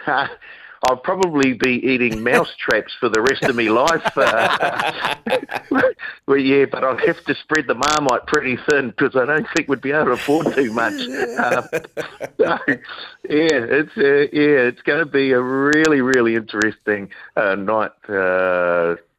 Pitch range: 85-115 Hz